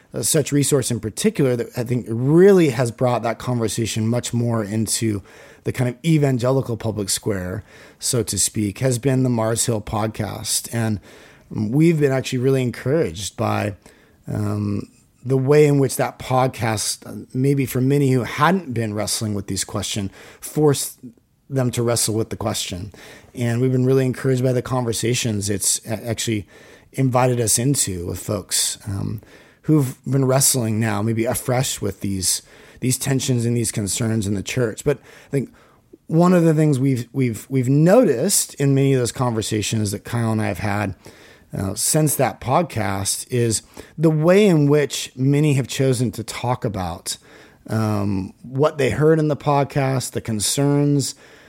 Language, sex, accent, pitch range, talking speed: English, male, American, 110-135 Hz, 160 wpm